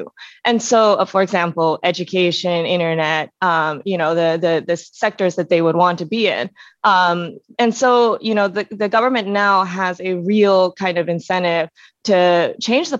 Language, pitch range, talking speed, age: English, 175-210 Hz, 180 wpm, 20-39